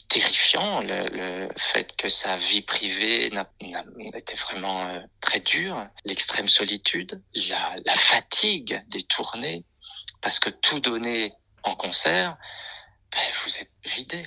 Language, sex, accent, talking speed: French, male, French, 135 wpm